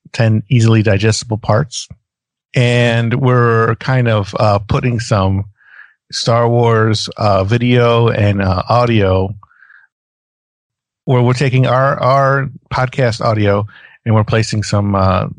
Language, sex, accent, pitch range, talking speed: English, male, American, 105-125 Hz, 115 wpm